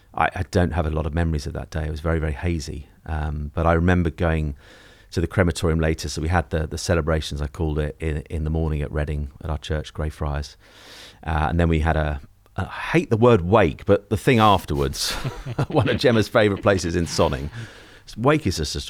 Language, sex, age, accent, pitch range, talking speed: English, male, 30-49, British, 75-90 Hz, 220 wpm